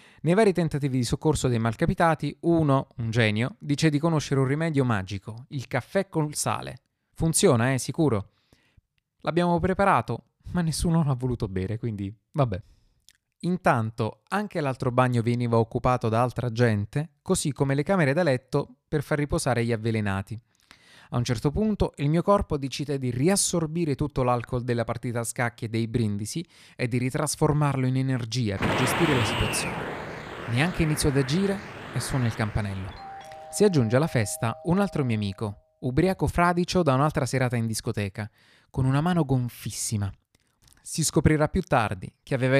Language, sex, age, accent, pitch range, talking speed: Italian, male, 20-39, native, 120-155 Hz, 160 wpm